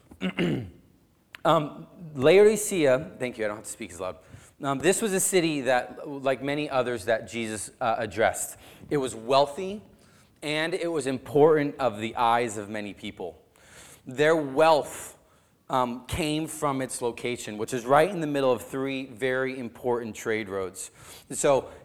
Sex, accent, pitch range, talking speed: male, American, 115-150 Hz, 155 wpm